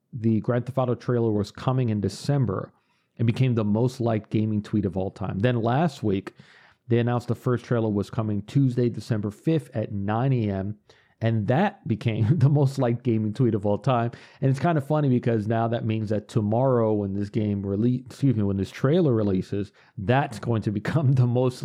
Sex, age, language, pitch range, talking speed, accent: male, 40-59, English, 105-130 Hz, 200 wpm, American